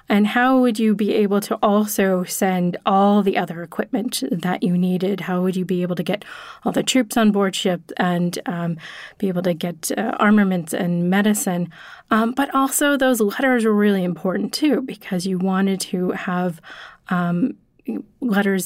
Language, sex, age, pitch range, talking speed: English, female, 30-49, 185-225 Hz, 175 wpm